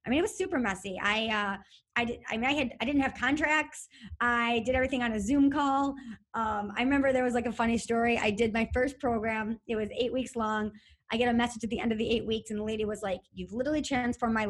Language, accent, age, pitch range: English, American, 20-39, 210-260 Hz